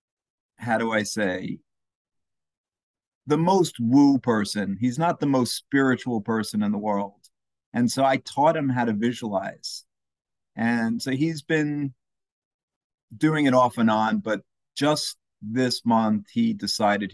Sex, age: male, 50-69